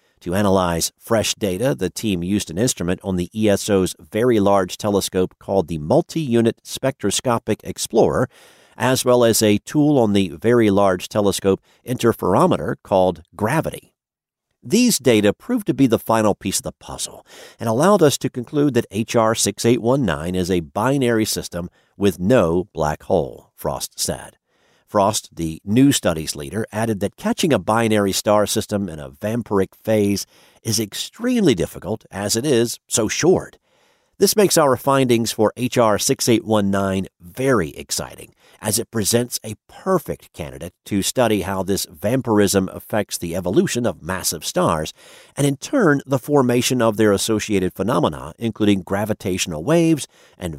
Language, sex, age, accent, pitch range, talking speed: English, male, 50-69, American, 95-125 Hz, 150 wpm